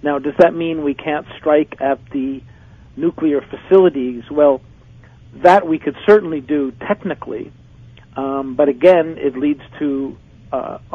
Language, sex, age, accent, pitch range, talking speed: English, male, 50-69, American, 125-155 Hz, 135 wpm